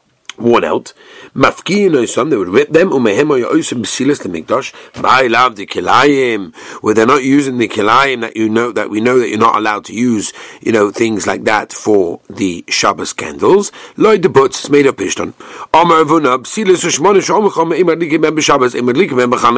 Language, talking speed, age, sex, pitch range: English, 115 wpm, 50-69, male, 125-205 Hz